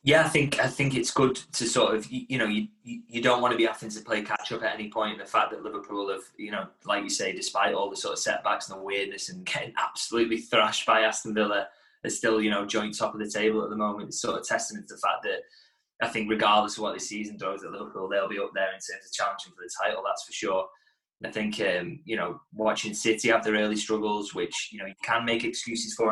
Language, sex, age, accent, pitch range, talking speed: English, male, 20-39, British, 105-115 Hz, 265 wpm